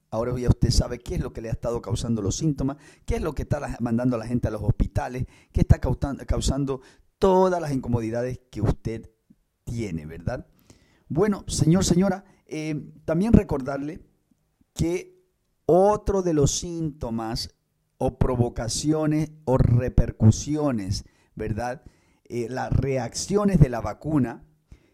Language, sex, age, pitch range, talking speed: English, male, 50-69, 120-160 Hz, 140 wpm